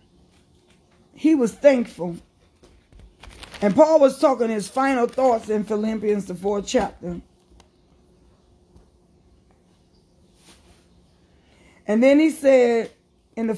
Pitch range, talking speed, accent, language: 190-275 Hz, 95 wpm, American, English